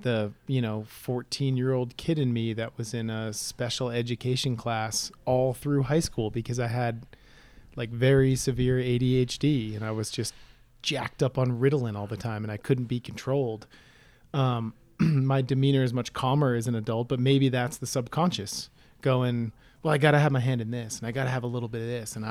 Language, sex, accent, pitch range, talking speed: English, male, American, 115-135 Hz, 205 wpm